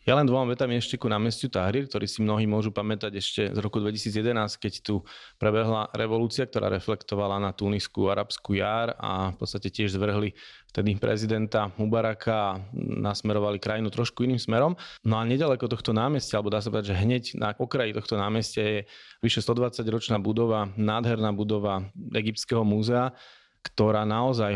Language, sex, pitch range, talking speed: Slovak, male, 105-115 Hz, 160 wpm